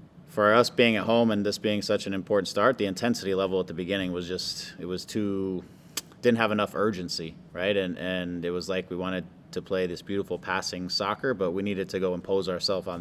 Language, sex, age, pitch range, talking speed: English, male, 30-49, 90-105 Hz, 220 wpm